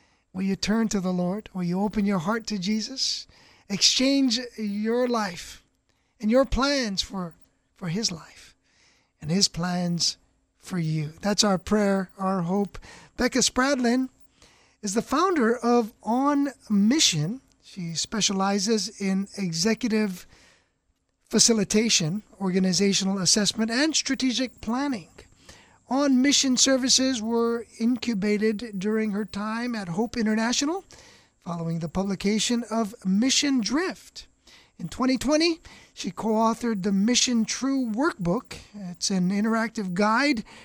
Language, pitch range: English, 195-240 Hz